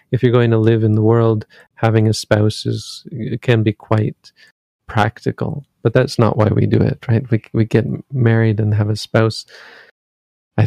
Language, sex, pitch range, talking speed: English, male, 105-120 Hz, 190 wpm